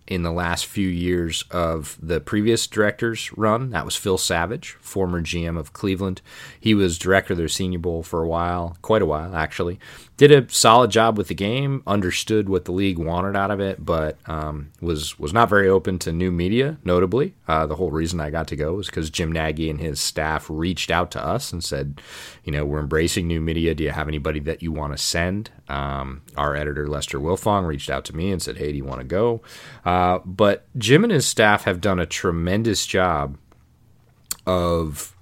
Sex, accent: male, American